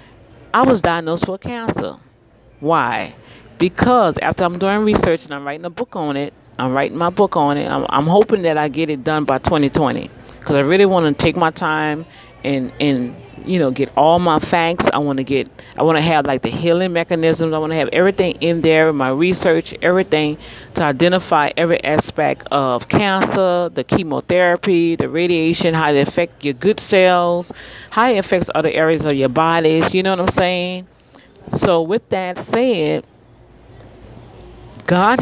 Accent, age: American, 40-59